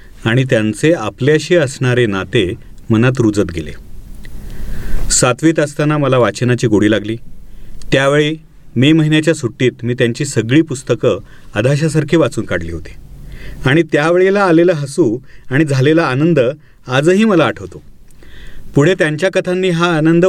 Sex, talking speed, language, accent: male, 120 wpm, Marathi, native